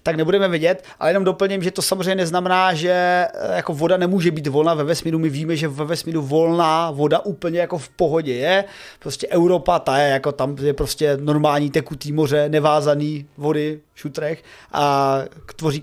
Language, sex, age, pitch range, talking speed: Czech, male, 30-49, 150-190 Hz, 180 wpm